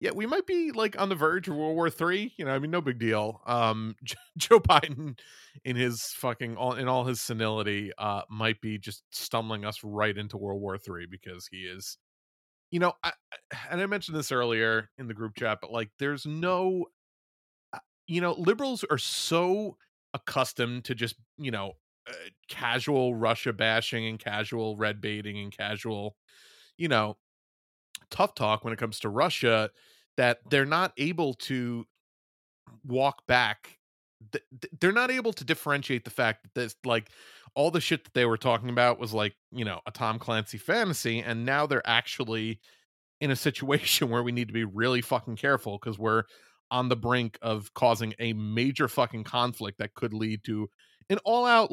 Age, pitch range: 30-49, 110-155 Hz